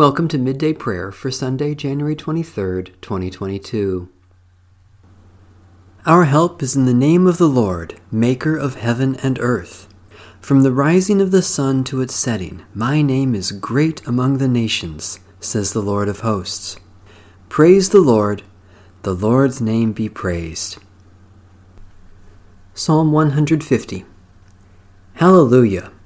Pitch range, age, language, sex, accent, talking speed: 95-140 Hz, 40-59, English, male, American, 125 wpm